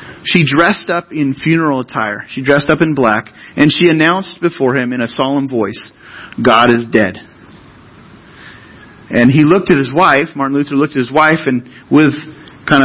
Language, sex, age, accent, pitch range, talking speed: English, male, 40-59, American, 130-180 Hz, 175 wpm